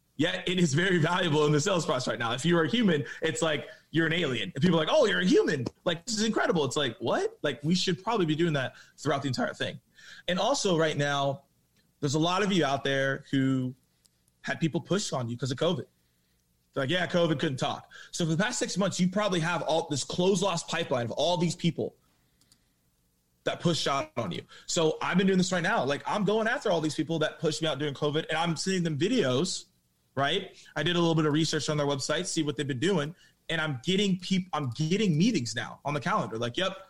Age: 20-39